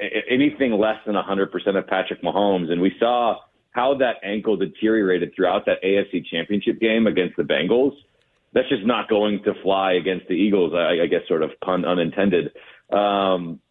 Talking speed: 175 wpm